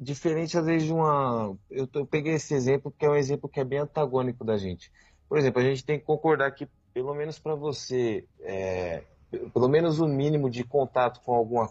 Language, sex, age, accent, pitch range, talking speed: Portuguese, male, 20-39, Brazilian, 115-150 Hz, 205 wpm